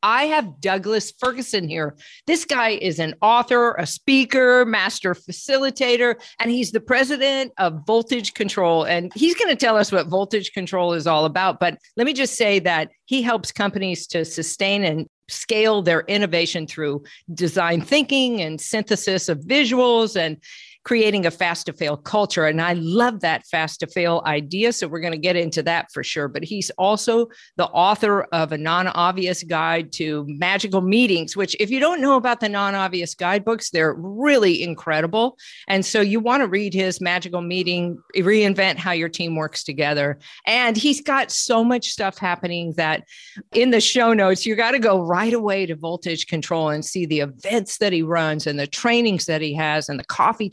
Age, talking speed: 50-69, 185 wpm